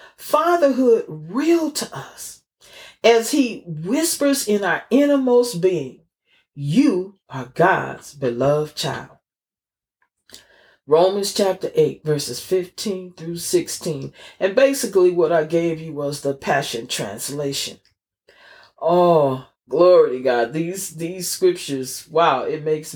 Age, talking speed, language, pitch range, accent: 40-59, 110 wpm, English, 150-240 Hz, American